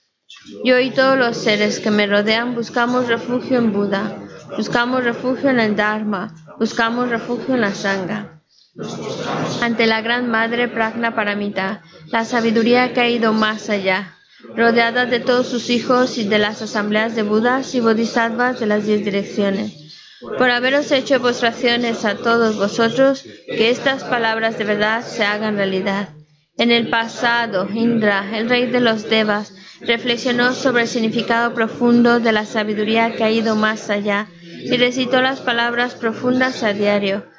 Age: 20-39